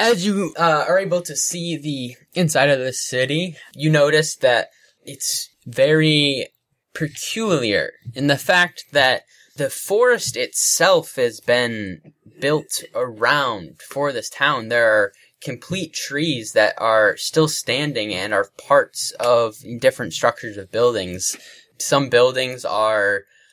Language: English